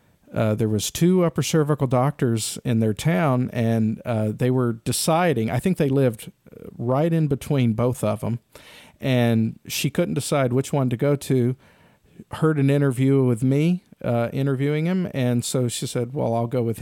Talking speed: 180 wpm